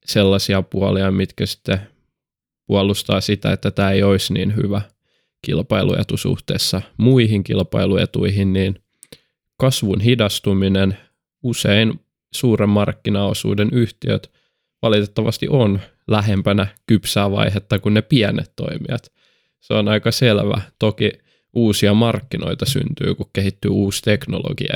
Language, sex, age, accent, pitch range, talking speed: Finnish, male, 20-39, native, 100-115 Hz, 105 wpm